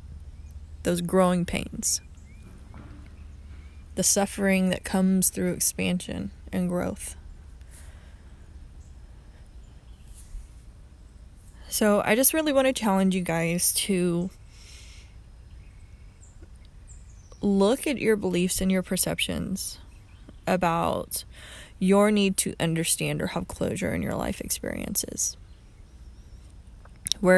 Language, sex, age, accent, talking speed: English, female, 20-39, American, 90 wpm